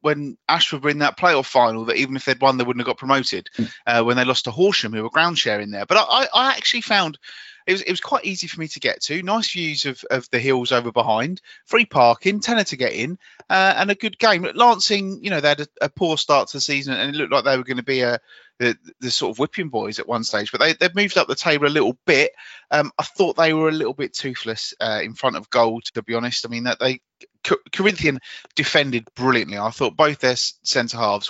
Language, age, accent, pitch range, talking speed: English, 30-49, British, 120-160 Hz, 260 wpm